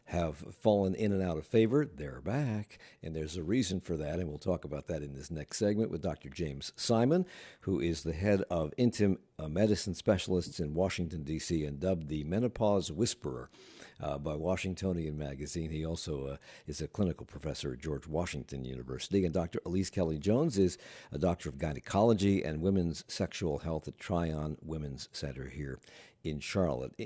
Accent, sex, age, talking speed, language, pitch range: American, male, 60-79, 175 wpm, English, 80-105 Hz